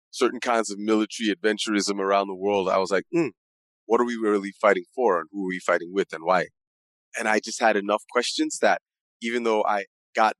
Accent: American